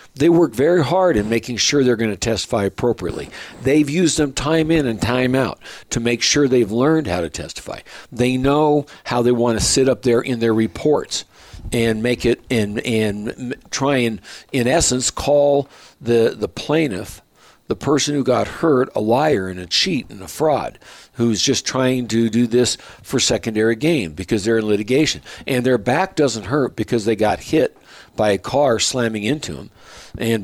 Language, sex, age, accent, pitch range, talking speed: English, male, 60-79, American, 110-140 Hz, 185 wpm